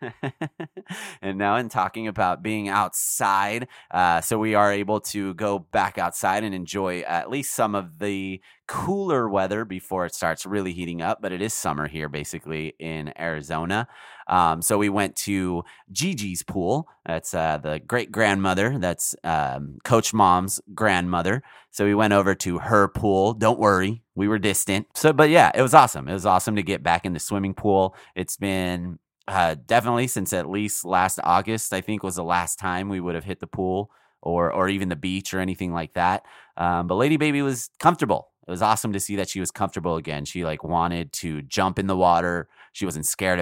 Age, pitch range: 30-49, 85-105 Hz